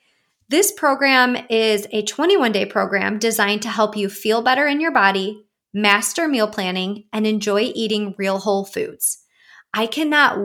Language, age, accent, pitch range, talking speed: English, 30-49, American, 205-255 Hz, 150 wpm